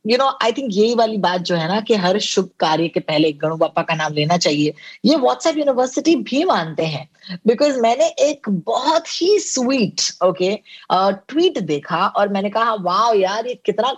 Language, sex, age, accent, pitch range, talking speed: Hindi, female, 20-39, native, 185-255 Hz, 185 wpm